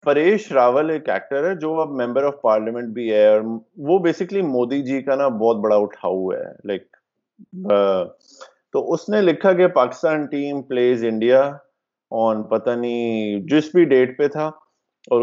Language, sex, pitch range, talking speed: Urdu, male, 115-165 Hz, 155 wpm